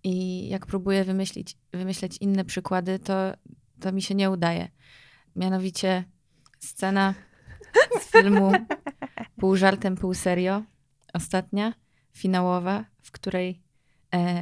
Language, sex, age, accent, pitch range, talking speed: Polish, female, 20-39, native, 175-195 Hz, 110 wpm